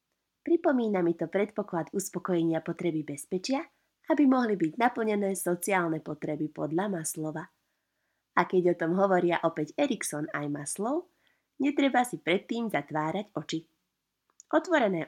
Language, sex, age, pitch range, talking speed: Slovak, female, 20-39, 160-200 Hz, 120 wpm